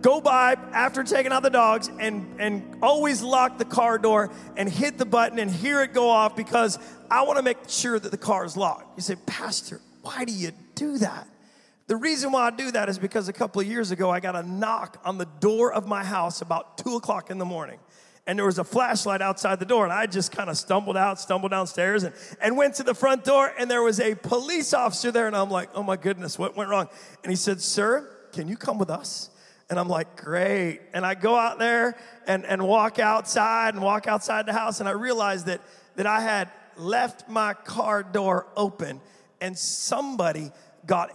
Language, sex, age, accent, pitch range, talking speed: English, male, 40-59, American, 190-245 Hz, 220 wpm